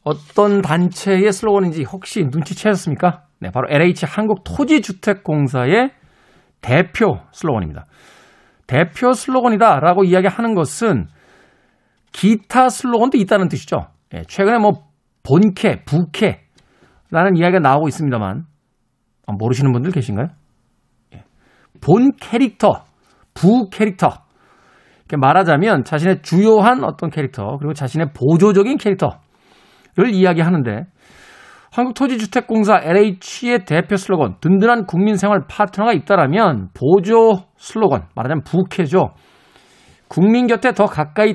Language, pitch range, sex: Korean, 160-220 Hz, male